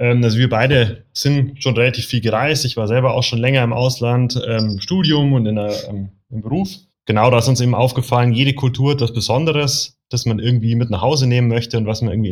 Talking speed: 235 wpm